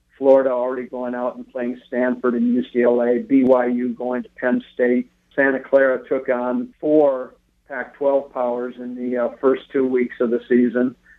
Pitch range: 125-135 Hz